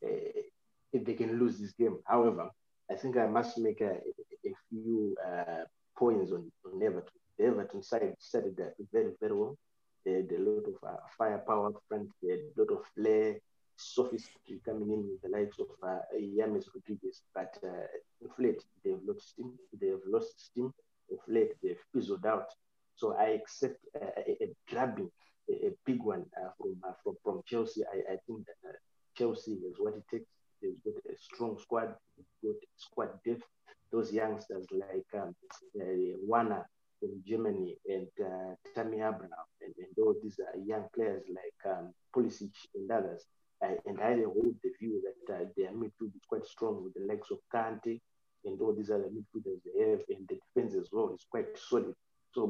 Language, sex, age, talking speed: English, male, 30-49, 185 wpm